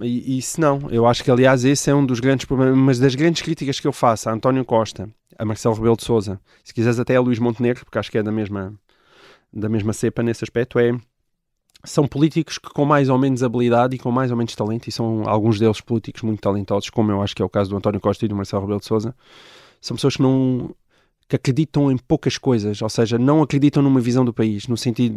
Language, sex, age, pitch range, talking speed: Portuguese, male, 20-39, 110-135 Hz, 240 wpm